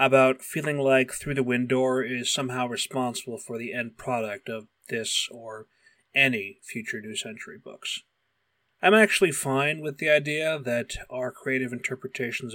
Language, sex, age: English, male, 30-49